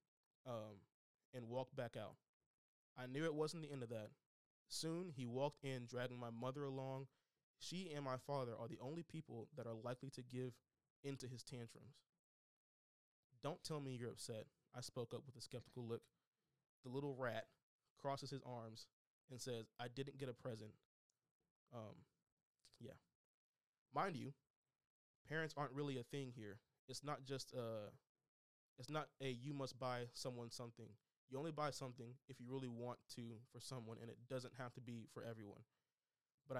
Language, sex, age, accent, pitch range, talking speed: English, male, 20-39, American, 120-140 Hz, 165 wpm